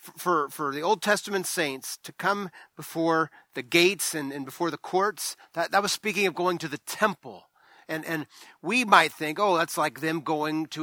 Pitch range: 150-200 Hz